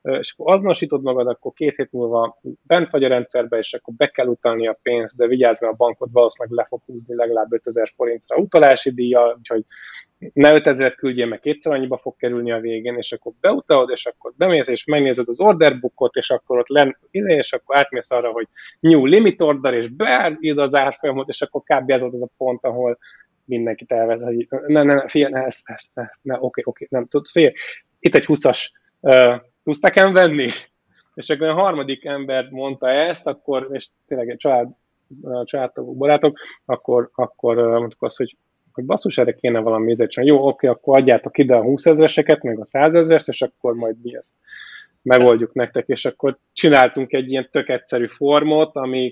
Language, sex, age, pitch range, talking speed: Hungarian, male, 20-39, 120-145 Hz, 180 wpm